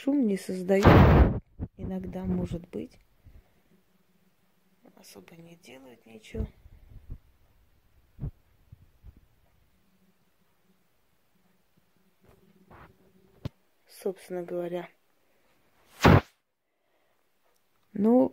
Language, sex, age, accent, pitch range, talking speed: Russian, female, 20-39, native, 165-200 Hz, 45 wpm